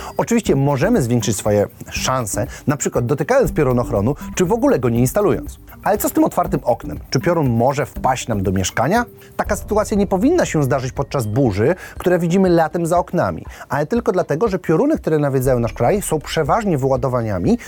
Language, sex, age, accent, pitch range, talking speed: Polish, male, 30-49, native, 125-185 Hz, 180 wpm